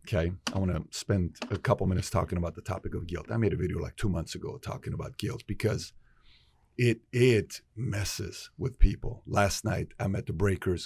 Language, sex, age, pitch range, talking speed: English, male, 30-49, 95-115 Hz, 205 wpm